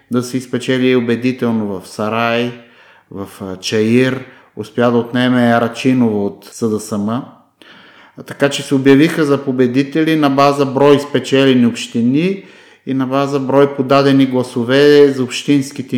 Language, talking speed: Bulgarian, 130 wpm